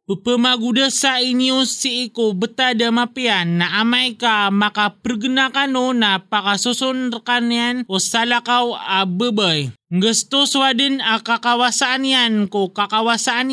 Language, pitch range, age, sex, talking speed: English, 200-255 Hz, 20-39, male, 110 wpm